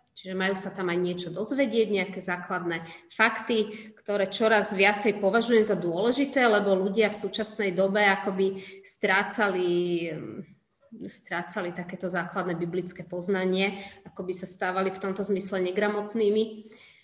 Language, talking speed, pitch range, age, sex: Slovak, 125 wpm, 180-210 Hz, 30-49, female